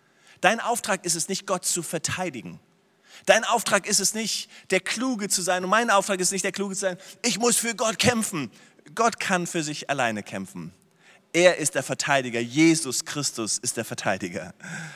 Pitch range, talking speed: 130-180 Hz, 185 wpm